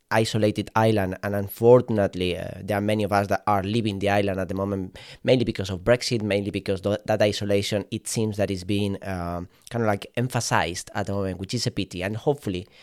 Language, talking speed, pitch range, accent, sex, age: English, 210 wpm, 95-115 Hz, Spanish, male, 30-49